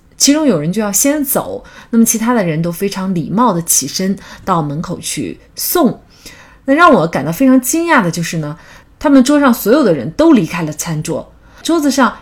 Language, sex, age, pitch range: Chinese, female, 30-49, 175-245 Hz